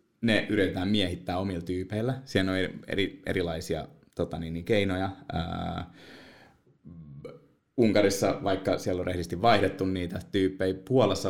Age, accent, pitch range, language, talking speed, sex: 20-39, native, 90-110 Hz, Finnish, 110 wpm, male